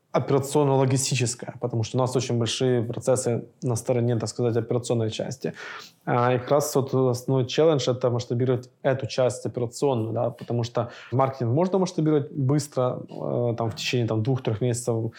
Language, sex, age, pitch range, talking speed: Russian, male, 20-39, 120-130 Hz, 160 wpm